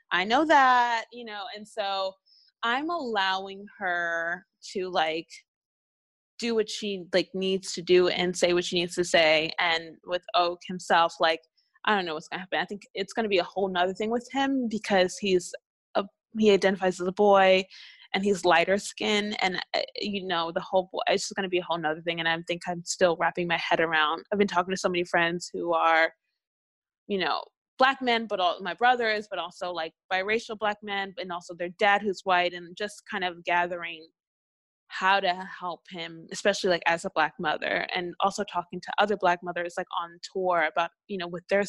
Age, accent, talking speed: 20-39, American, 205 wpm